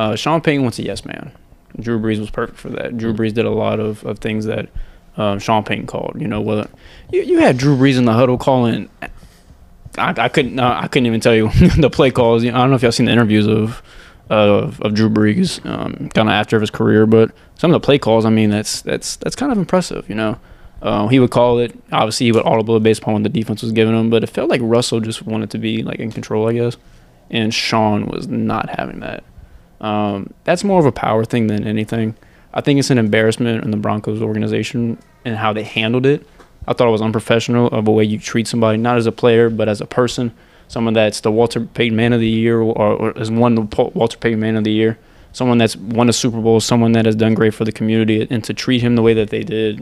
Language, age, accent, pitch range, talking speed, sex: English, 20-39, American, 110-120 Hz, 255 wpm, male